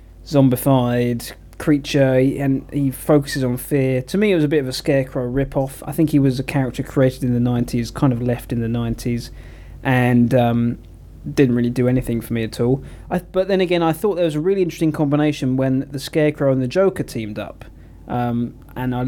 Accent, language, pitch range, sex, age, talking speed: British, English, 125-155 Hz, male, 20-39, 210 wpm